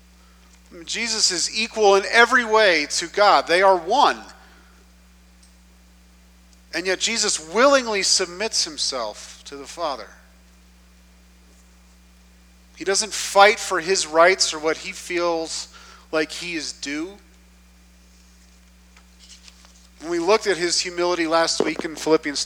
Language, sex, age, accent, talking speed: English, male, 40-59, American, 120 wpm